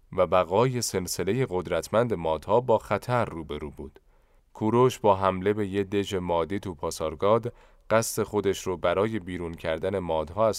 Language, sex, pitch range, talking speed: Persian, male, 90-115 Hz, 155 wpm